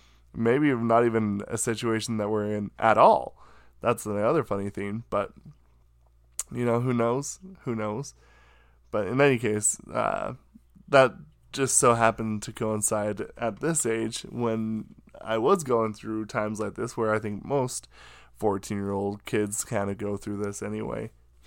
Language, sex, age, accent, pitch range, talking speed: English, male, 10-29, American, 100-120 Hz, 155 wpm